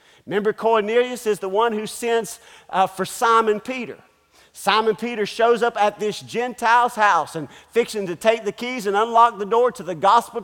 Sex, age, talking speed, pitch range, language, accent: male, 50-69, 185 wpm, 195-250 Hz, English, American